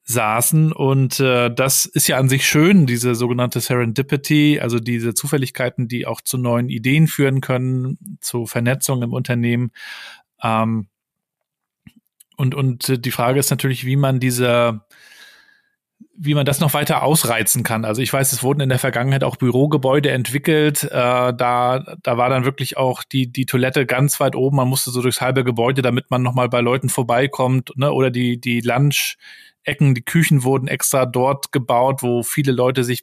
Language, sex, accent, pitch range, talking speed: German, male, German, 120-140 Hz, 175 wpm